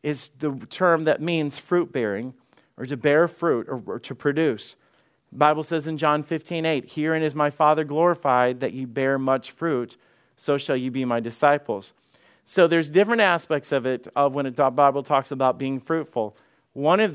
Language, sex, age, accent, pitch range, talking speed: English, male, 40-59, American, 135-165 Hz, 190 wpm